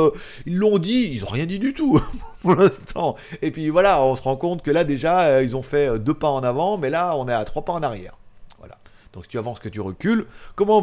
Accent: French